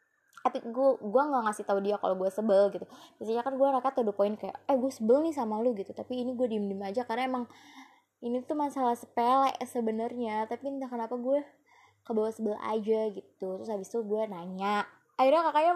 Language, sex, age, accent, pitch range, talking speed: Indonesian, female, 20-39, native, 195-245 Hz, 200 wpm